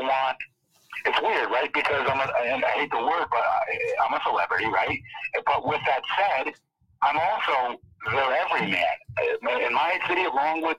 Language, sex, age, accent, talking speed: English, male, 50-69, American, 180 wpm